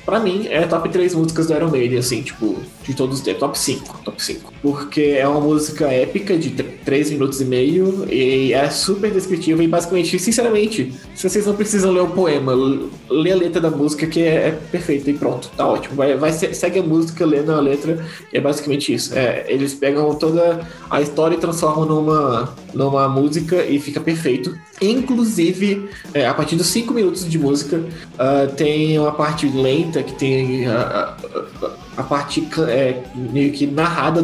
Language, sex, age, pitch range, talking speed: Portuguese, male, 20-39, 140-170 Hz, 190 wpm